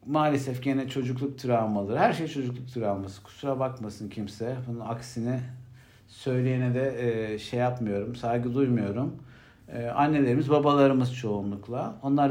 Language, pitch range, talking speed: Turkish, 120-160 Hz, 110 wpm